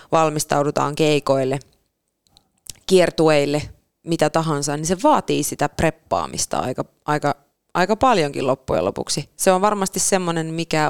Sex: female